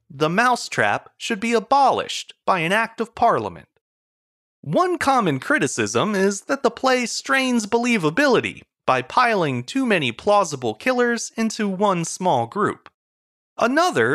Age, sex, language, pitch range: 30-49, male, English, 170-240 Hz